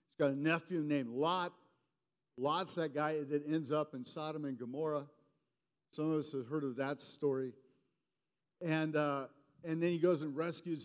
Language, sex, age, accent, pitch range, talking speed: English, male, 50-69, American, 145-180 Hz, 170 wpm